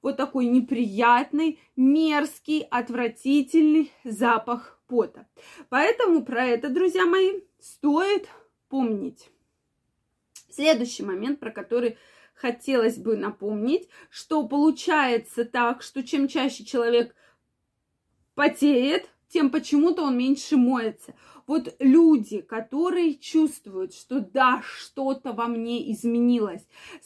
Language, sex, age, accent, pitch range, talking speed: Russian, female, 20-39, native, 235-295 Hz, 100 wpm